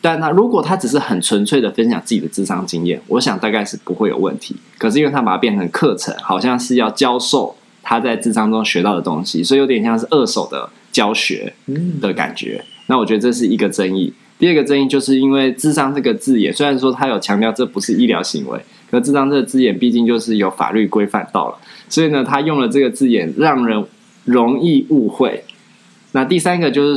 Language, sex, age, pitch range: Chinese, male, 20-39, 110-140 Hz